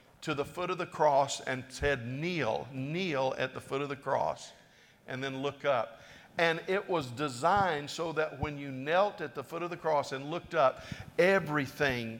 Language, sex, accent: English, male, American